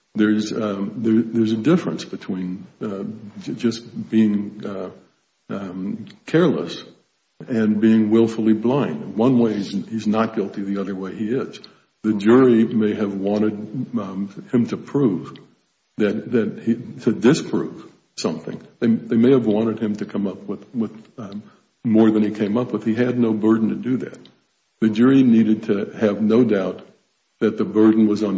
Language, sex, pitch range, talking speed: English, male, 105-115 Hz, 170 wpm